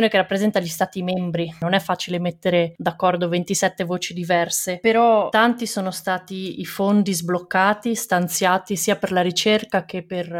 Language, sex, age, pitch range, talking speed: Italian, female, 20-39, 180-210 Hz, 155 wpm